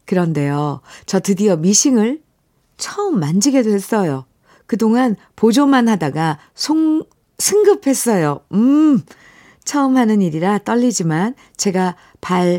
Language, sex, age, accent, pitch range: Korean, female, 50-69, native, 155-215 Hz